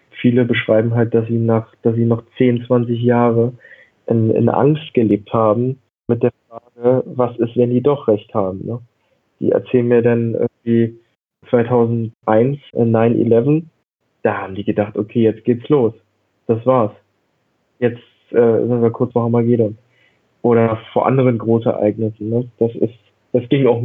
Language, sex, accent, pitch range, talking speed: German, male, German, 115-125 Hz, 160 wpm